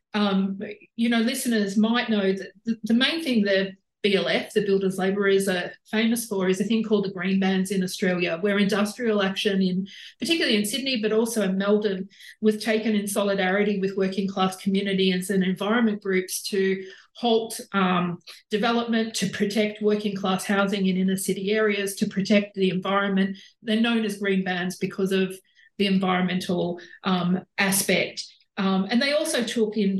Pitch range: 190-215 Hz